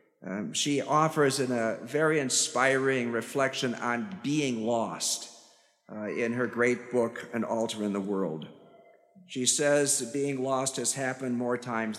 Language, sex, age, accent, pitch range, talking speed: English, male, 50-69, American, 135-190 Hz, 145 wpm